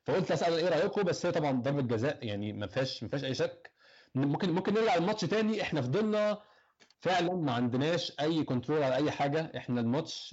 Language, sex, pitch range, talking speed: Arabic, male, 130-175 Hz, 190 wpm